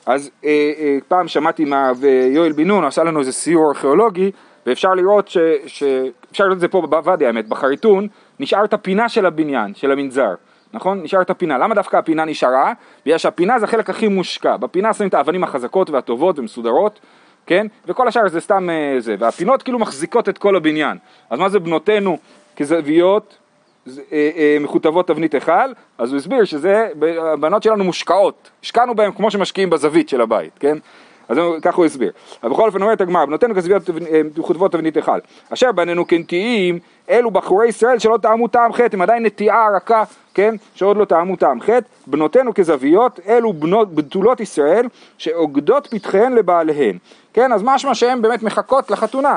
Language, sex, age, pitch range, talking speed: Hebrew, male, 30-49, 160-220 Hz, 165 wpm